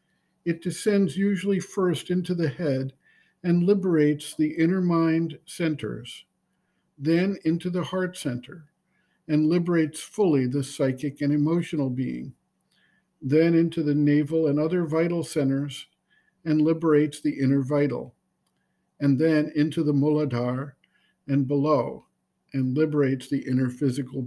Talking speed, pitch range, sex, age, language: 125 wpm, 140-170 Hz, male, 50-69, English